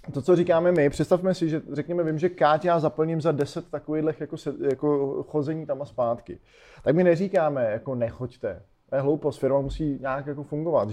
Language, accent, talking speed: Czech, native, 190 wpm